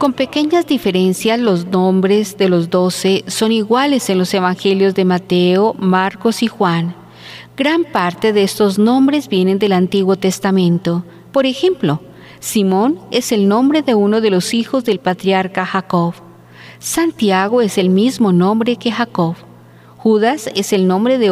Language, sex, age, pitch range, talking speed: Spanish, female, 40-59, 180-230 Hz, 150 wpm